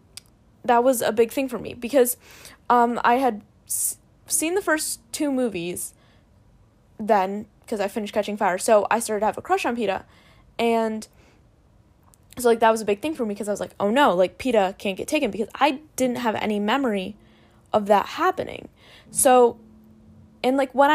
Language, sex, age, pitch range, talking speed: English, female, 10-29, 205-240 Hz, 190 wpm